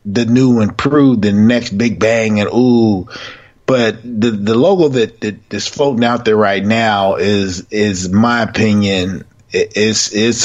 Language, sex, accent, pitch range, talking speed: English, male, American, 105-120 Hz, 160 wpm